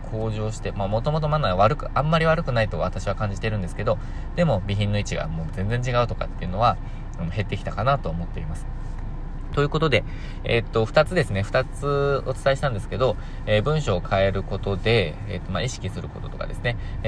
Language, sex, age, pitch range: Japanese, male, 20-39, 95-130 Hz